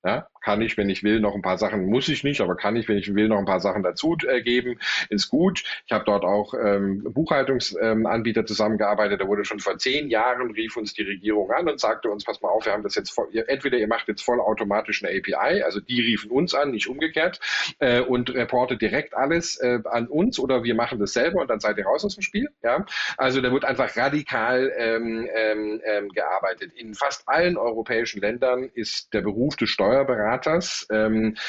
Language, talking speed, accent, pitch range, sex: German, 215 wpm, German, 105-125 Hz, male